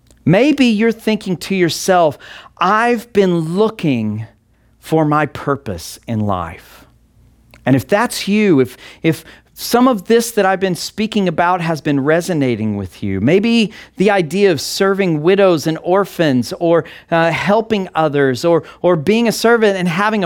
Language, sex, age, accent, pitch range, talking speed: English, male, 40-59, American, 125-205 Hz, 150 wpm